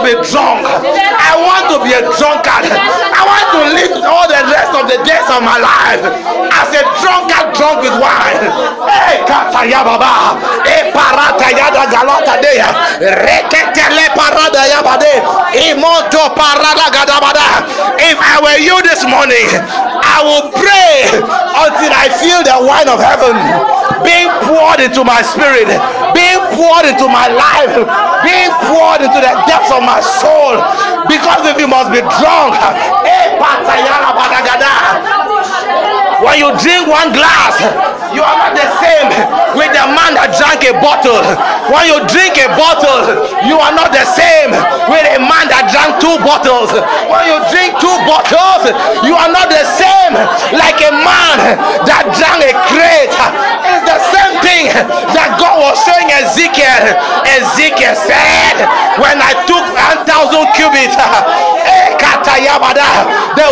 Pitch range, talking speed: 290-355 Hz, 125 wpm